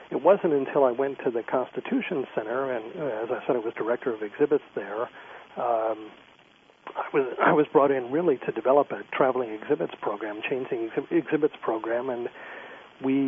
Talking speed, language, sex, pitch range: 170 wpm, English, male, 120-140 Hz